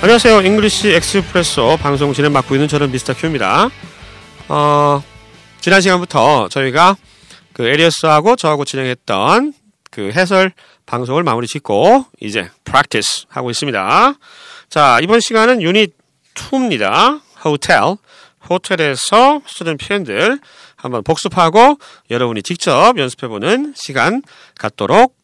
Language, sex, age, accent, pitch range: Korean, male, 40-59, native, 145-230 Hz